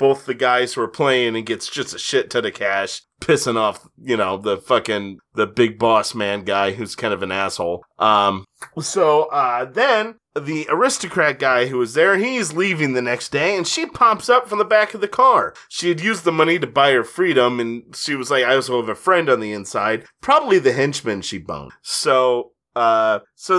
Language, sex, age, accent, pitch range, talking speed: English, male, 30-49, American, 120-180 Hz, 215 wpm